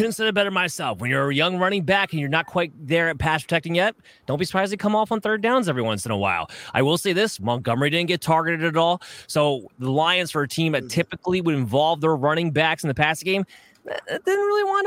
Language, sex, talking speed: English, male, 260 wpm